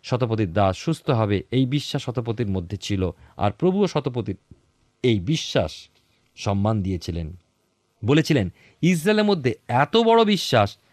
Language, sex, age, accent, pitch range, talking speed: Bengali, male, 50-69, native, 100-150 Hz, 120 wpm